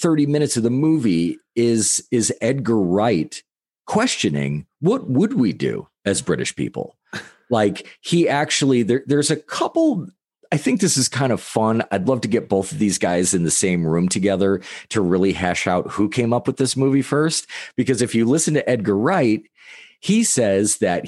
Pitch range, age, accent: 80-115 Hz, 40-59, American